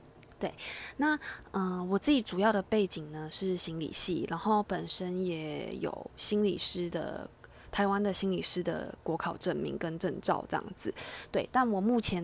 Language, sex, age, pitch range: Chinese, female, 20-39, 180-205 Hz